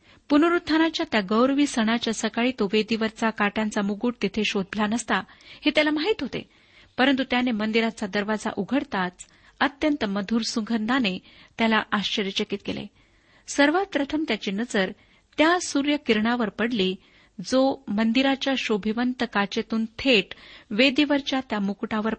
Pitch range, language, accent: 210-265 Hz, Marathi, native